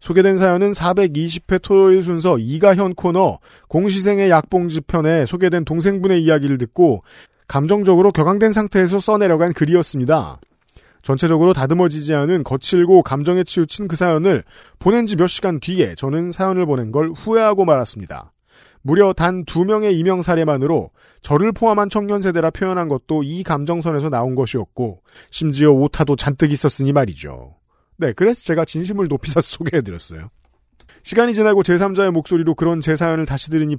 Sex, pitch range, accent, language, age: male, 140-185 Hz, native, Korean, 40-59